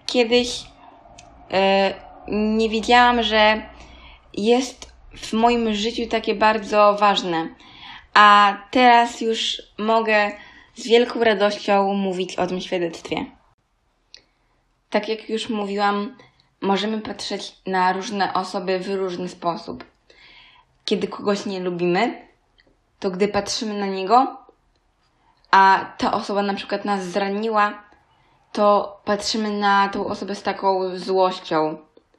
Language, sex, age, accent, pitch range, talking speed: Polish, female, 20-39, native, 195-220 Hz, 110 wpm